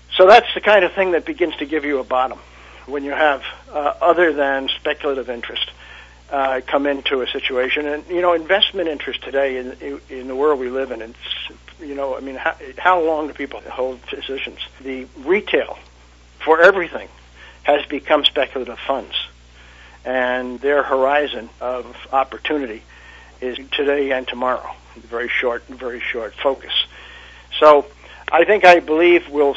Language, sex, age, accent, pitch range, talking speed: English, male, 60-79, American, 130-155 Hz, 160 wpm